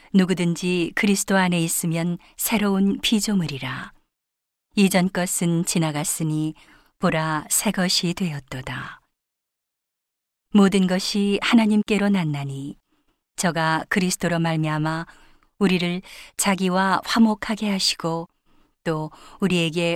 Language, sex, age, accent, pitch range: Korean, female, 40-59, native, 165-195 Hz